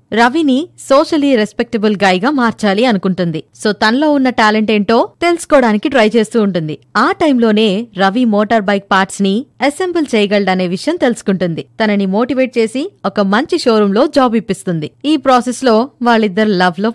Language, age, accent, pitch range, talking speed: Telugu, 20-39, native, 195-255 Hz, 150 wpm